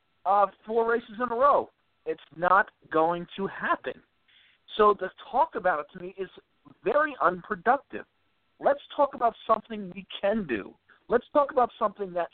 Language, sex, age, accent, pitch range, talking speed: English, male, 50-69, American, 155-220 Hz, 160 wpm